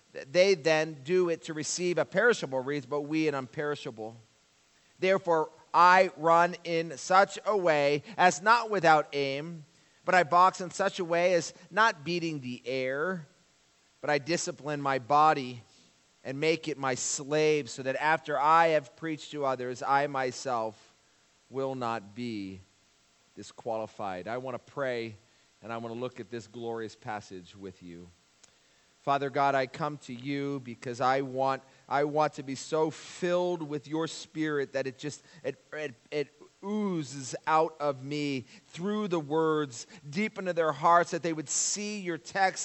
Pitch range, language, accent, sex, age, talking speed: 135-175 Hz, English, American, male, 40-59, 165 wpm